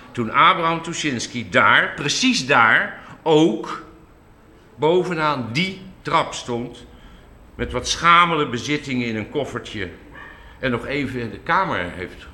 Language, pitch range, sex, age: Dutch, 105-140 Hz, male, 60-79